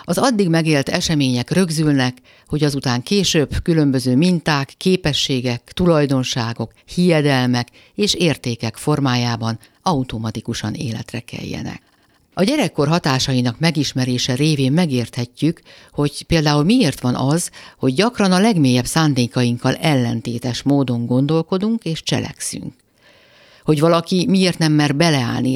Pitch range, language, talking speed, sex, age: 125-165 Hz, Hungarian, 110 wpm, female, 60-79